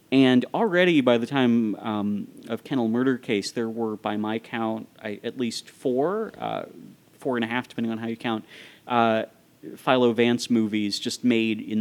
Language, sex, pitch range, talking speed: English, male, 110-125 Hz, 180 wpm